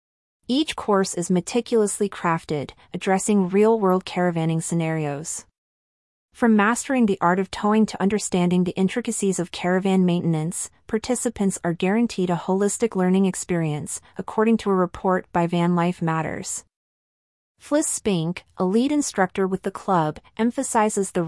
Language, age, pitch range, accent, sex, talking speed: English, 30-49, 170-210 Hz, American, female, 135 wpm